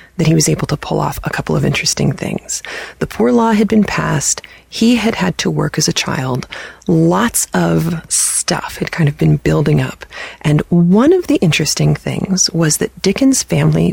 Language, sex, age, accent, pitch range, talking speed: English, female, 30-49, American, 145-185 Hz, 195 wpm